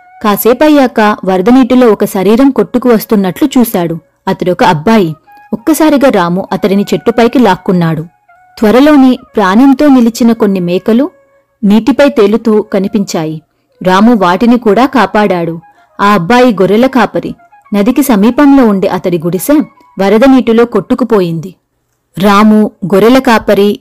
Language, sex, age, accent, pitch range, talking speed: Telugu, female, 30-49, native, 190-255 Hz, 100 wpm